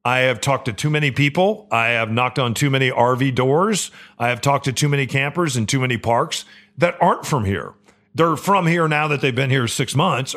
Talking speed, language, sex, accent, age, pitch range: 230 wpm, English, male, American, 40-59, 125-165 Hz